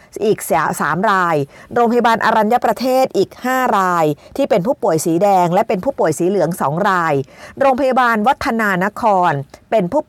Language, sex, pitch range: Thai, female, 180-235 Hz